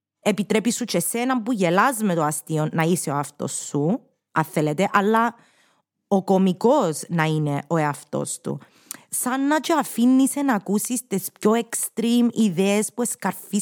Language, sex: Greek, female